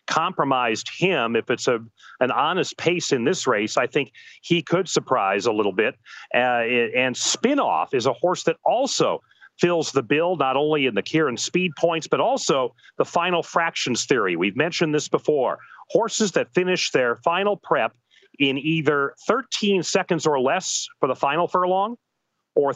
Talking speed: 170 wpm